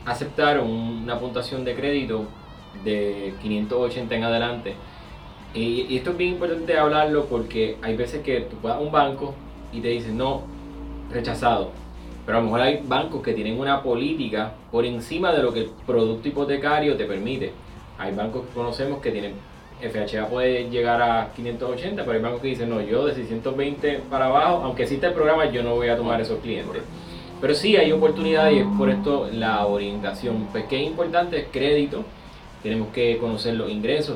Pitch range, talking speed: 110-140 Hz, 180 wpm